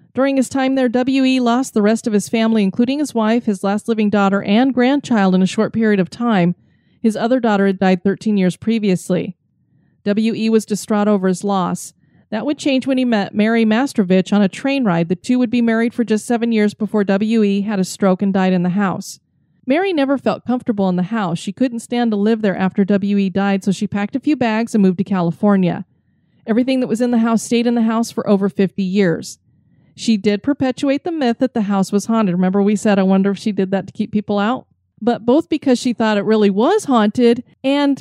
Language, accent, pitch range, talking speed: English, American, 195-240 Hz, 225 wpm